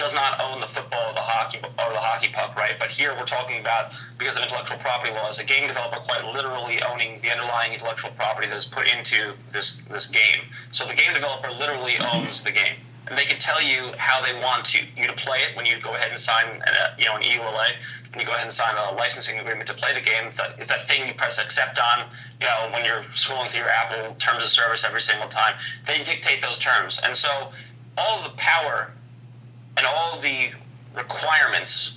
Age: 30-49